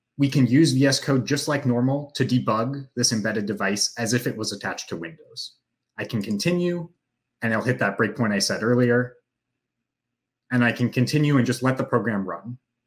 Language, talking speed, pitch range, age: English, 190 wpm, 115-140 Hz, 30-49